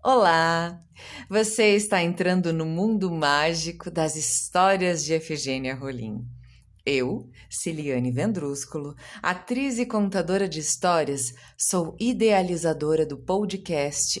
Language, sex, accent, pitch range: Portuguese, female, Brazilian, 130-195 Hz